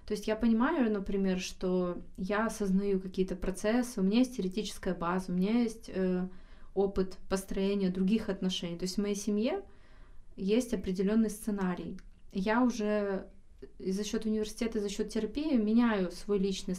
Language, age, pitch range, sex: Russian, 20-39, 190-215 Hz, female